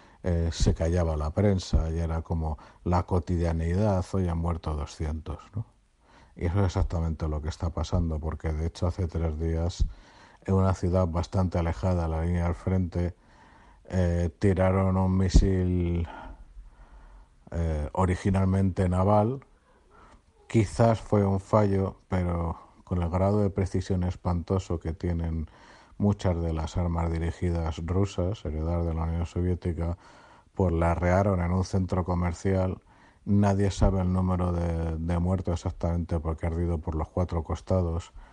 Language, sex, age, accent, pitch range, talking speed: Spanish, male, 50-69, Spanish, 80-95 Hz, 140 wpm